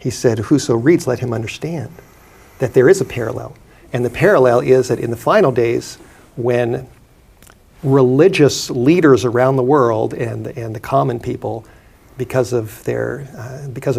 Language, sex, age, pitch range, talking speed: English, male, 50-69, 120-135 Hz, 140 wpm